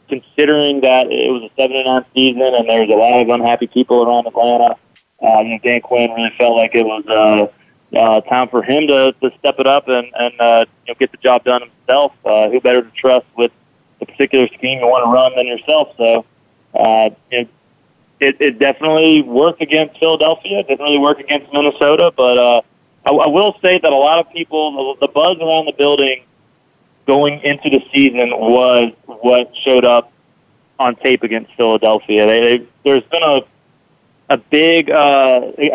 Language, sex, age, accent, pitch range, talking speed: English, male, 30-49, American, 115-140 Hz, 195 wpm